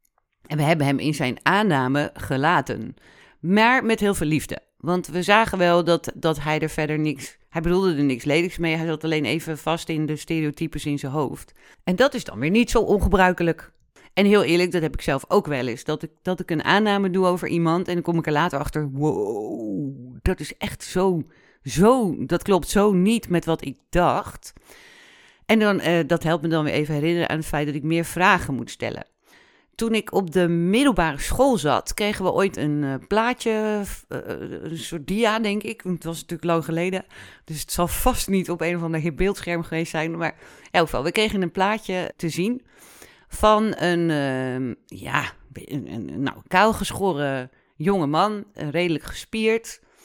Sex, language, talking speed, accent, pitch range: female, Dutch, 185 wpm, Dutch, 150-200 Hz